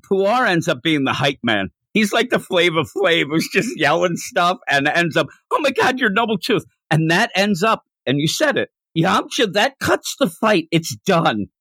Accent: American